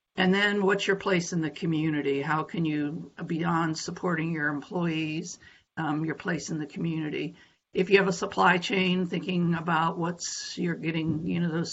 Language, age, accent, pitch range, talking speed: English, 50-69, American, 160-185 Hz, 180 wpm